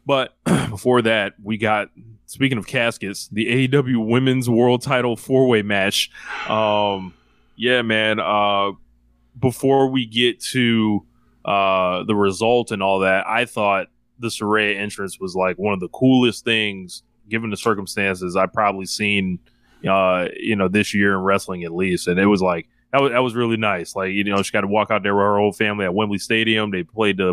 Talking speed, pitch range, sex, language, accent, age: 185 wpm, 100-120 Hz, male, English, American, 20-39